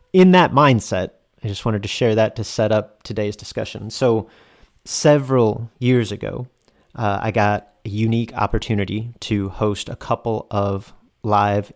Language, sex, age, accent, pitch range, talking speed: English, male, 30-49, American, 105-130 Hz, 155 wpm